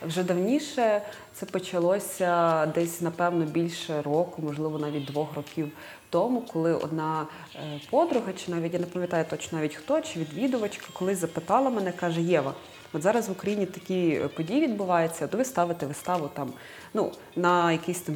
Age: 20-39